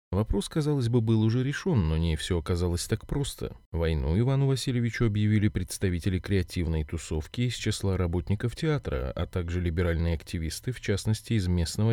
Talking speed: 155 wpm